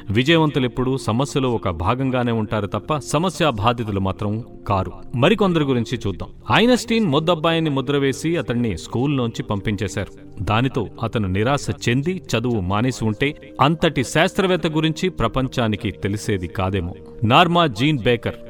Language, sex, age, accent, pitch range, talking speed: Telugu, male, 40-59, native, 110-160 Hz, 115 wpm